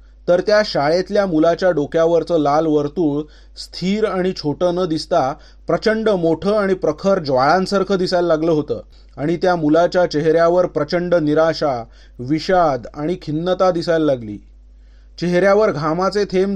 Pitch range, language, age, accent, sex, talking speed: 155-195 Hz, Marathi, 30-49, native, male, 125 wpm